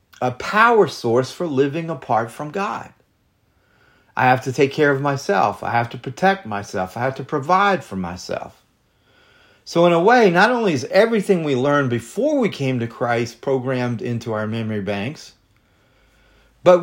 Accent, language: American, English